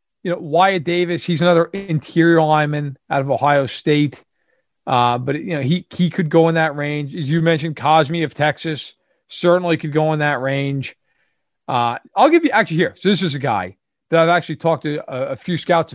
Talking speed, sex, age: 205 wpm, male, 40-59